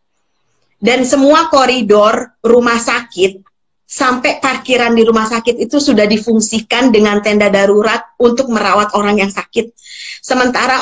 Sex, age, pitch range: female, 30-49, 220-255 Hz